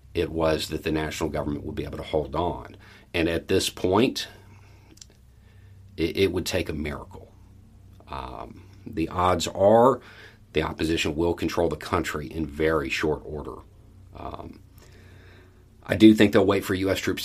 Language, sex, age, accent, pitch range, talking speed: English, male, 40-59, American, 80-110 Hz, 155 wpm